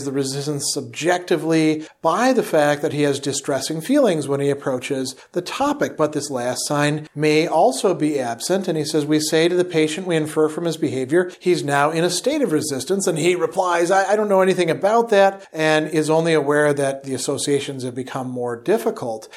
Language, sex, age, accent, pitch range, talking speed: English, male, 40-59, American, 140-175 Hz, 200 wpm